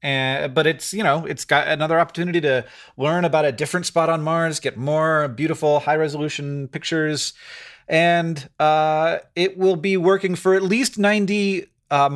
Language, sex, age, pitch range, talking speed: English, male, 30-49, 125-165 Hz, 160 wpm